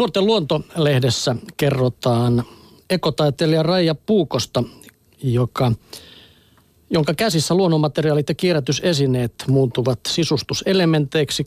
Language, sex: Finnish, male